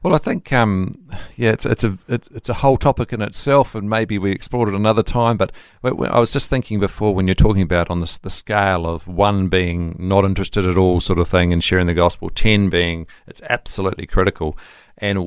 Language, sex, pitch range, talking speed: English, male, 90-110 Hz, 215 wpm